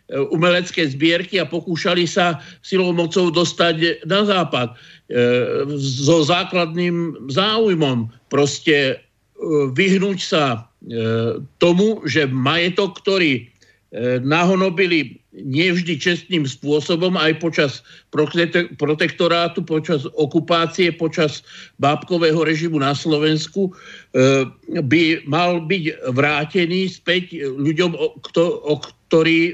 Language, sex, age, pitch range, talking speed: Slovak, male, 50-69, 140-175 Hz, 95 wpm